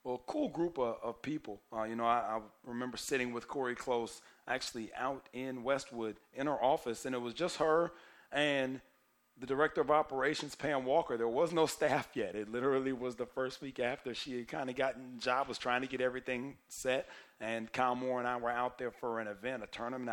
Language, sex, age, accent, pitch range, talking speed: English, male, 40-59, American, 105-125 Hz, 220 wpm